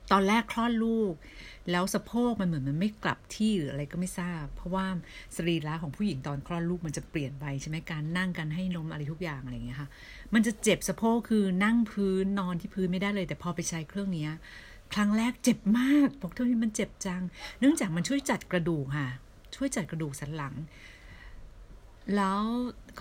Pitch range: 160-215 Hz